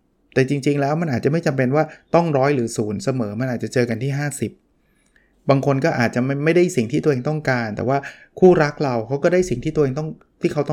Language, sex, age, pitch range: Thai, male, 20-39, 120-145 Hz